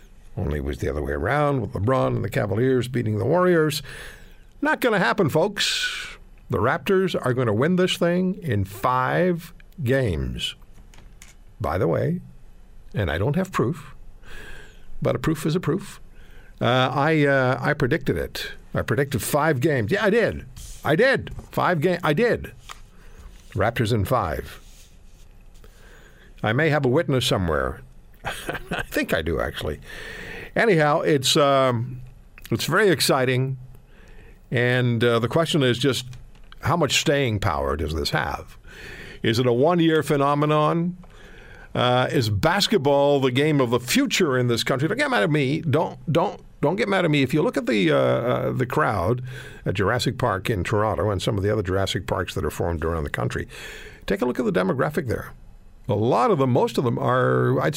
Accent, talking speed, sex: American, 175 wpm, male